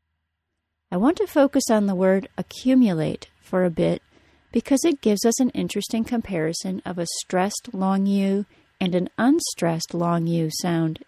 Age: 30-49